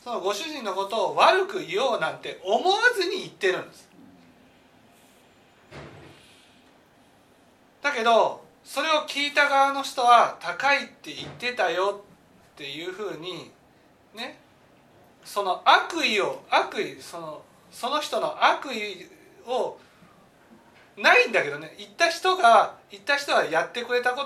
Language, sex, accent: Japanese, male, native